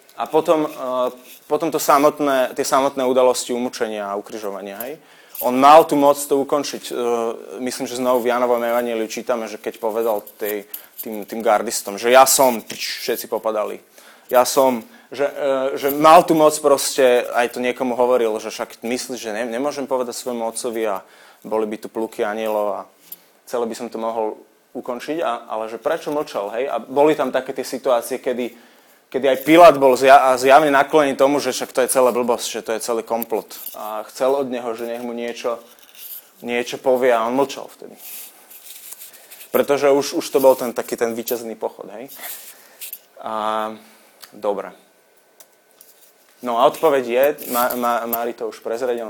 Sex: male